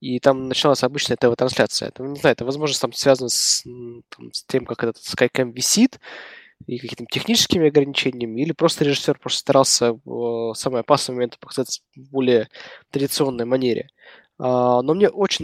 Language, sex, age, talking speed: Russian, male, 20-39, 150 wpm